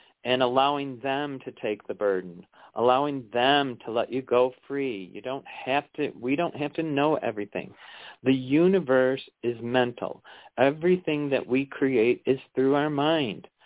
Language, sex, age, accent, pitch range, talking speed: English, male, 40-59, American, 120-145 Hz, 160 wpm